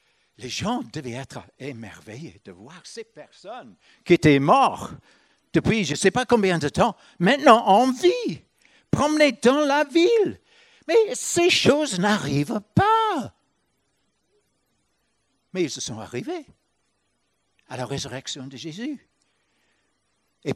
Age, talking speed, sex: 60-79, 125 wpm, male